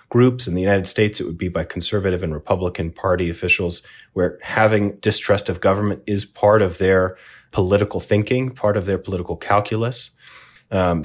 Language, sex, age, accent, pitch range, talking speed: English, male, 30-49, American, 90-105 Hz, 170 wpm